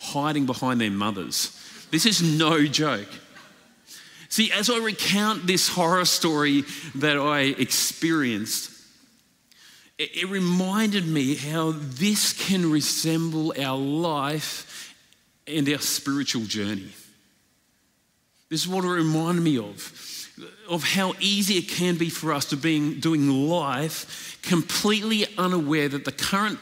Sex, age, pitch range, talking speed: male, 40-59, 140-175 Hz, 125 wpm